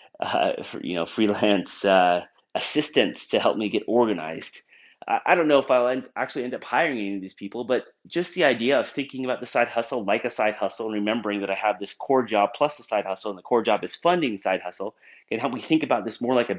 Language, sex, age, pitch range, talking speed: English, male, 30-49, 100-125 Hz, 250 wpm